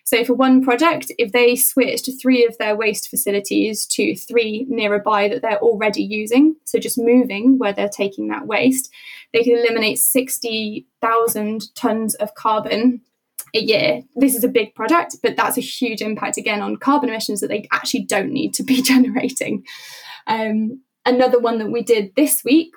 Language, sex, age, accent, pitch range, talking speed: English, female, 10-29, British, 215-260 Hz, 175 wpm